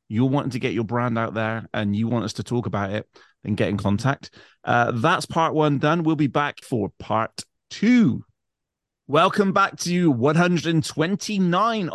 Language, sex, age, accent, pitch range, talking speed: English, male, 30-49, British, 105-140 Hz, 175 wpm